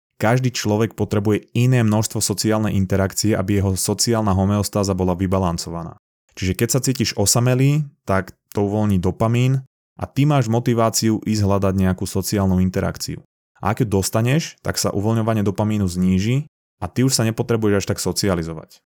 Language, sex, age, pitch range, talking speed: Slovak, male, 20-39, 95-110 Hz, 150 wpm